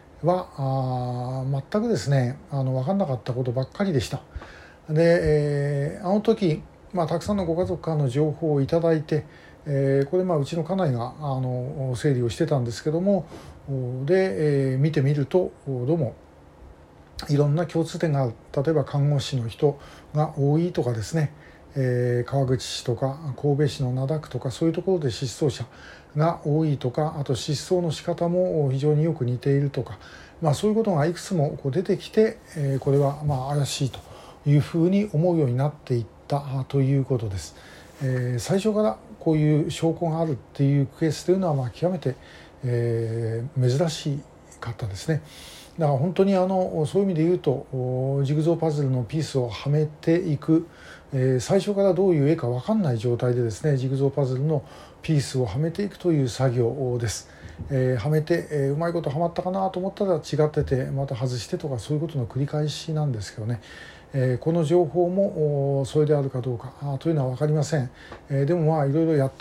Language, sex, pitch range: Japanese, male, 130-165 Hz